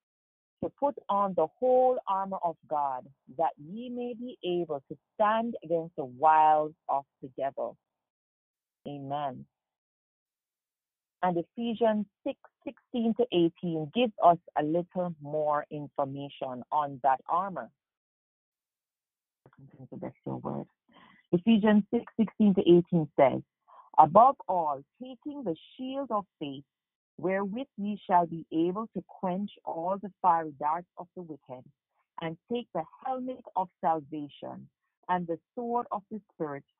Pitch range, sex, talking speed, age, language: 145-215 Hz, female, 125 wpm, 40-59, English